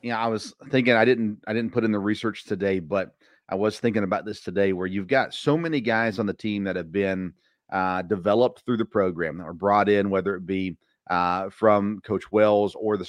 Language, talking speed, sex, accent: English, 235 wpm, male, American